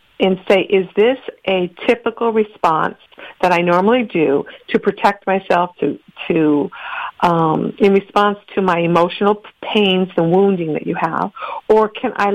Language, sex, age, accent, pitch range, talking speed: English, female, 50-69, American, 175-215 Hz, 150 wpm